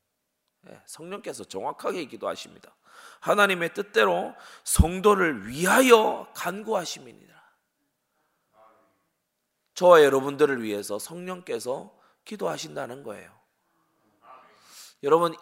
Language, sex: Korean, male